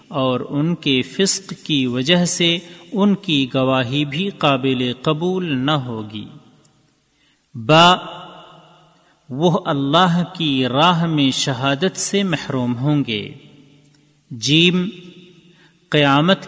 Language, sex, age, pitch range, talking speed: Urdu, male, 40-59, 135-180 Hz, 100 wpm